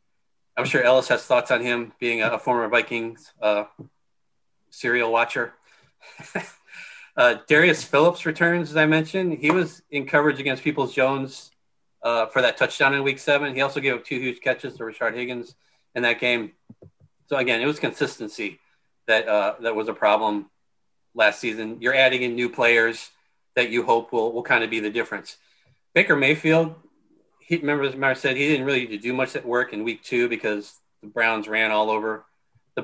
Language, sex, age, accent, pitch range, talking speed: English, male, 30-49, American, 115-140 Hz, 180 wpm